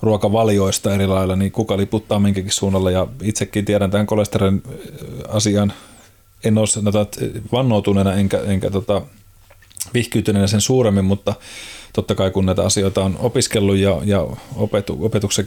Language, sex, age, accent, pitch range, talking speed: Finnish, male, 30-49, native, 95-105 Hz, 125 wpm